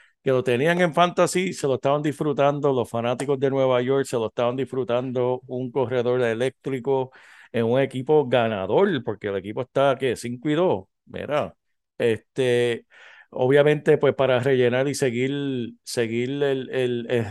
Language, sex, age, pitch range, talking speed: Spanish, male, 50-69, 120-150 Hz, 160 wpm